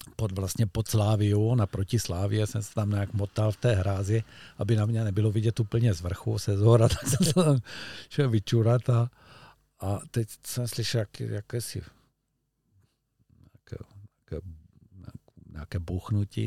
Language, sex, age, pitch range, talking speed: Czech, male, 50-69, 100-125 Hz, 140 wpm